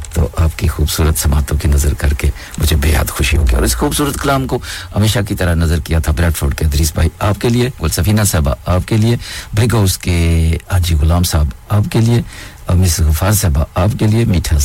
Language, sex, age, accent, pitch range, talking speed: English, male, 50-69, Indian, 80-105 Hz, 175 wpm